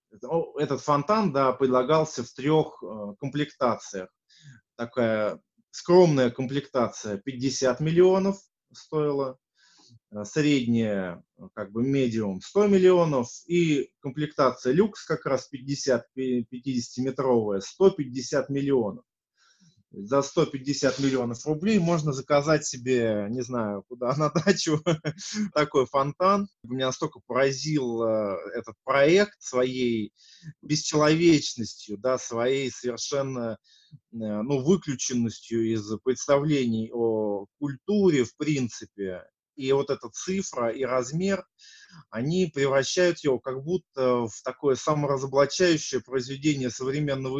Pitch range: 120-155 Hz